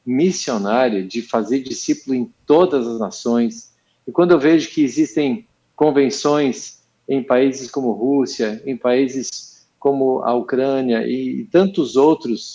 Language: Portuguese